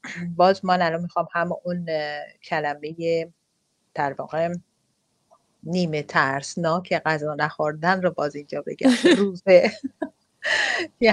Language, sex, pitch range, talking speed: English, female, 160-205 Hz, 100 wpm